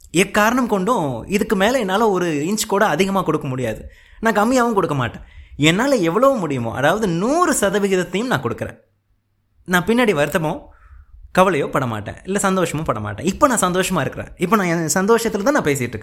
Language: Tamil